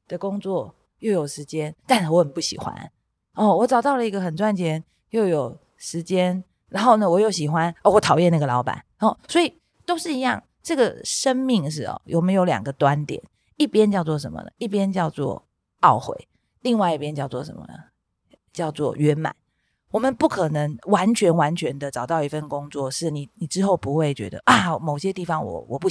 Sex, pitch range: female, 150-210 Hz